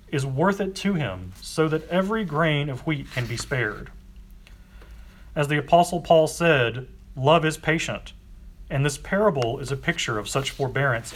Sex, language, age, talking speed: male, English, 40-59, 165 wpm